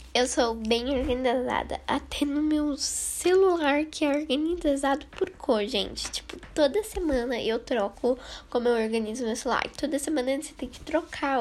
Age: 10-29